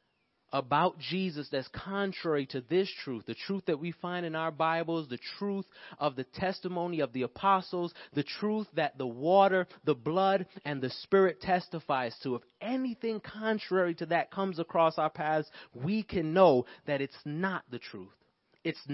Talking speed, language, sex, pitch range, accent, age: 170 wpm, English, male, 150-195 Hz, American, 30-49